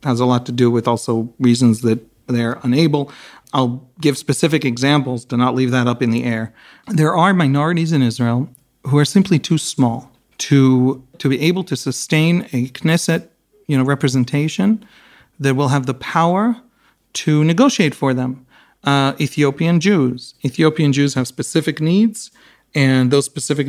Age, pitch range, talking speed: 40-59, 125-155 Hz, 155 wpm